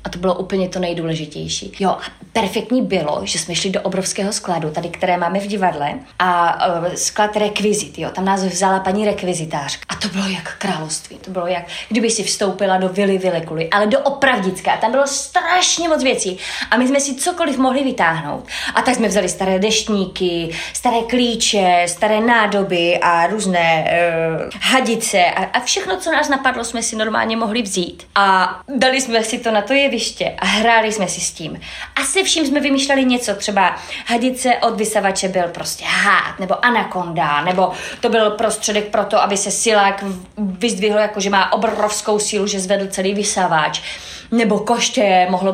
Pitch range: 185-230 Hz